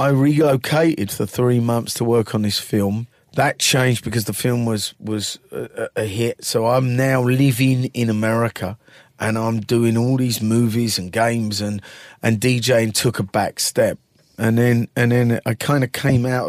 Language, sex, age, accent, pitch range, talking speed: English, male, 40-59, British, 115-140 Hz, 180 wpm